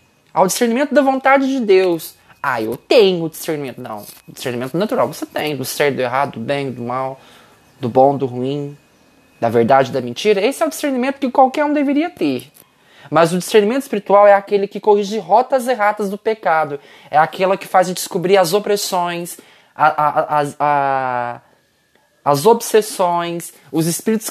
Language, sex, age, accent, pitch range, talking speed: Portuguese, male, 20-39, Brazilian, 160-235 Hz, 160 wpm